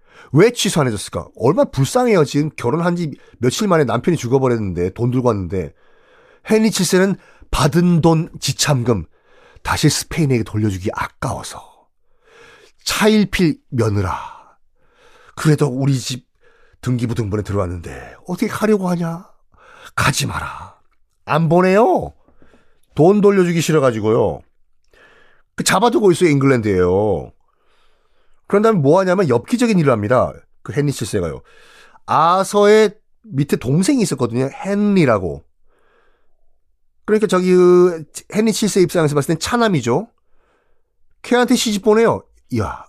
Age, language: 40-59, Korean